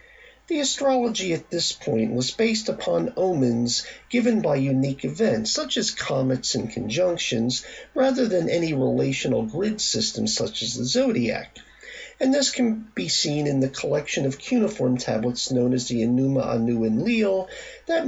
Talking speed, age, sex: 155 wpm, 40-59, male